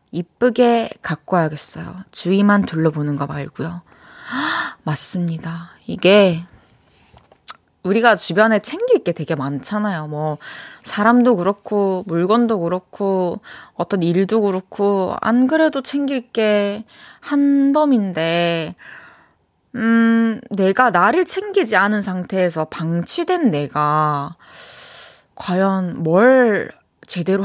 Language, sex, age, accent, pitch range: Korean, female, 20-39, native, 170-245 Hz